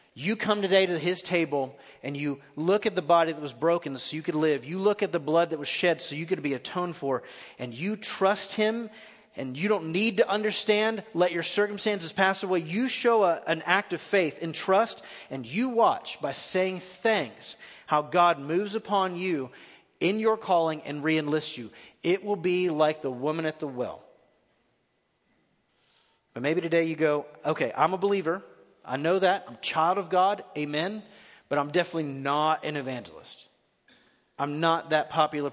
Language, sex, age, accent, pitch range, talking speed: English, male, 30-49, American, 130-185 Hz, 190 wpm